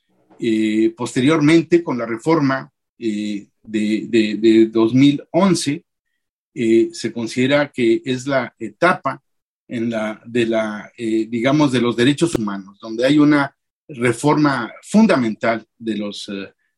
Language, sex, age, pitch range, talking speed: Spanish, male, 50-69, 115-155 Hz, 125 wpm